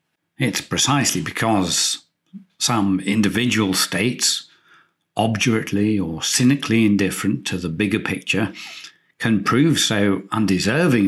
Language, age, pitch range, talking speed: English, 50-69, 100-140 Hz, 95 wpm